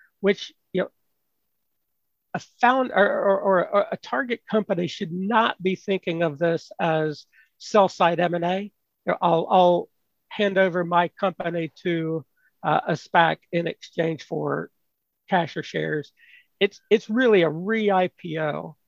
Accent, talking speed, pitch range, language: American, 140 wpm, 165-200 Hz, English